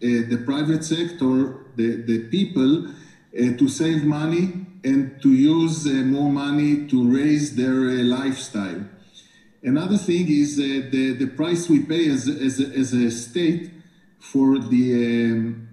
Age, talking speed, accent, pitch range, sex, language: 40-59, 145 wpm, Italian, 130-165 Hz, male, English